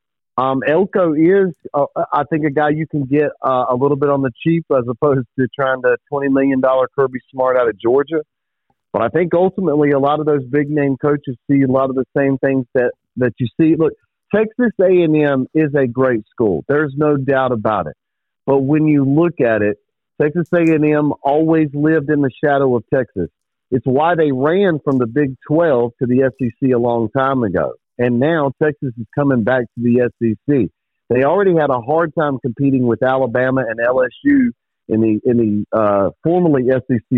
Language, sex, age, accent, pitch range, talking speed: English, male, 40-59, American, 125-155 Hz, 195 wpm